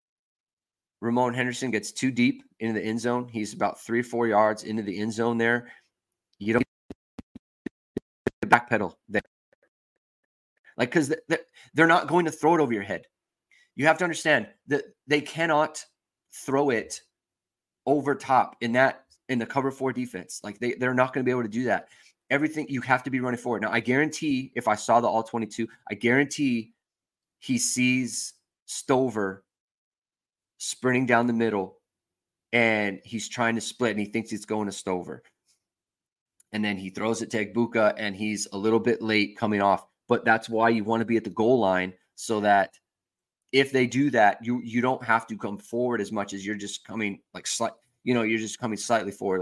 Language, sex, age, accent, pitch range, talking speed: English, male, 30-49, American, 105-125 Hz, 190 wpm